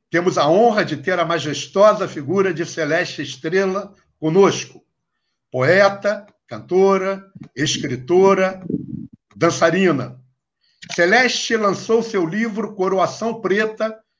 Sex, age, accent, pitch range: male, 60-79, Brazilian, 165-205 Hz